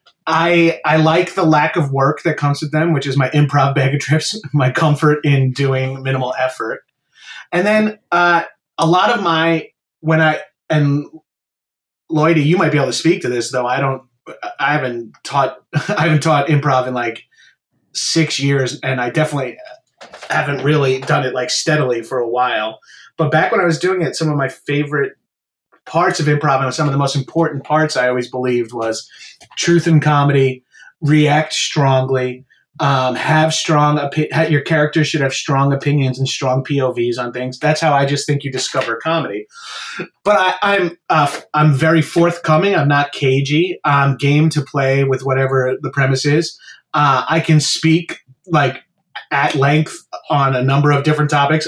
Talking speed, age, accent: 180 wpm, 30-49, American